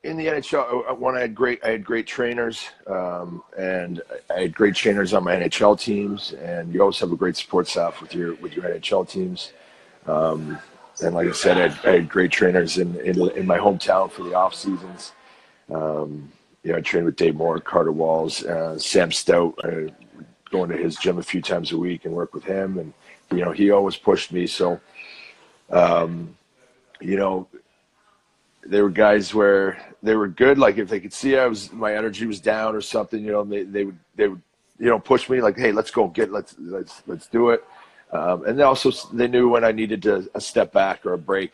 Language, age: English, 40-59